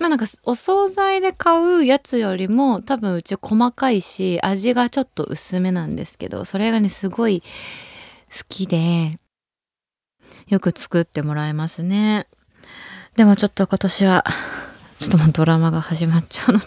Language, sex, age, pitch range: Japanese, female, 20-39, 175-275 Hz